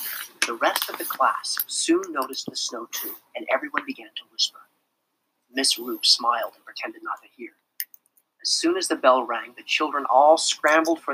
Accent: American